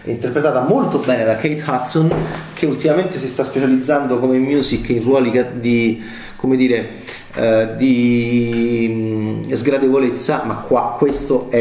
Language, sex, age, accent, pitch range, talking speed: Italian, male, 30-49, native, 115-130 Hz, 130 wpm